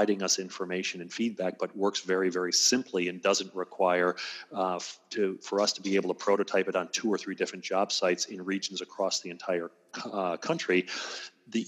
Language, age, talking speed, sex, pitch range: English, 30-49, 195 wpm, male, 90-100 Hz